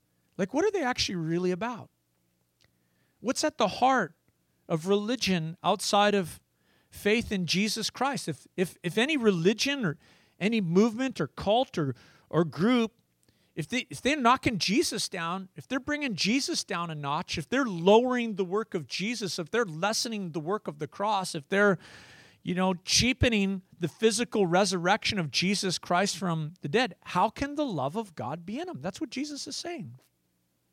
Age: 40-59